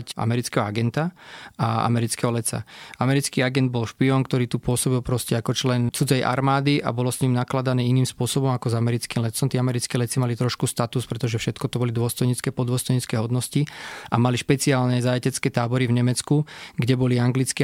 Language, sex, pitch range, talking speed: Slovak, male, 120-130 Hz, 175 wpm